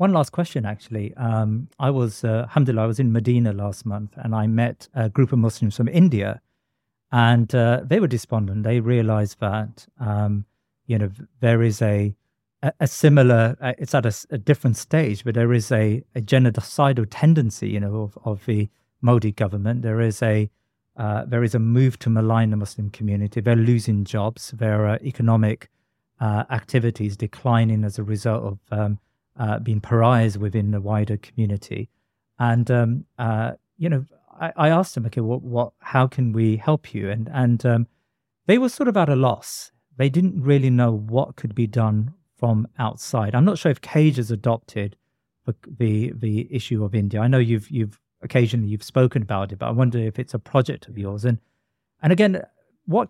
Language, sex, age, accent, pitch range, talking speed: English, male, 50-69, British, 110-130 Hz, 190 wpm